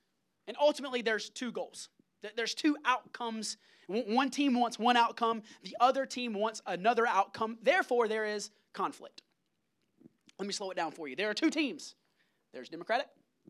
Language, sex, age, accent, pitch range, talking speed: English, male, 30-49, American, 205-265 Hz, 160 wpm